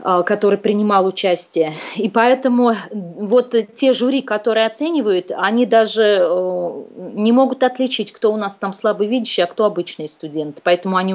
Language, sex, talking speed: Russian, female, 140 wpm